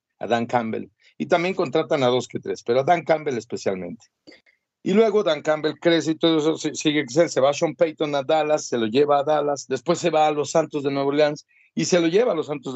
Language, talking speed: Spanish, 250 wpm